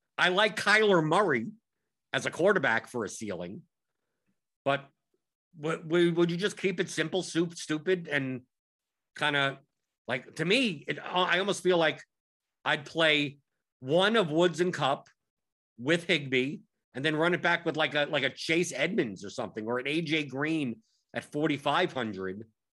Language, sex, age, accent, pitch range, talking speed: English, male, 50-69, American, 135-170 Hz, 155 wpm